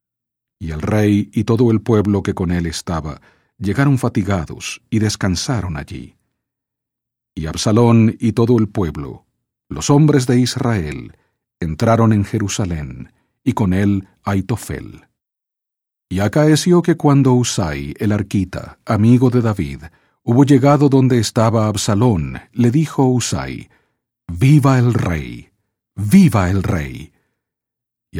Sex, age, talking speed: male, 50-69, 125 wpm